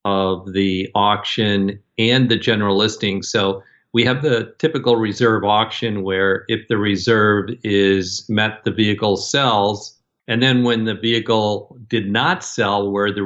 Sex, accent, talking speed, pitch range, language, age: male, American, 150 wpm, 100-115 Hz, English, 50-69